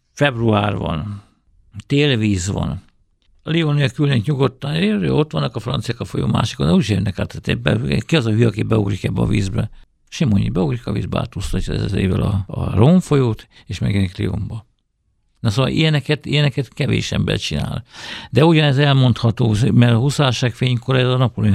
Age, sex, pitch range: 50-69, male, 105-125 Hz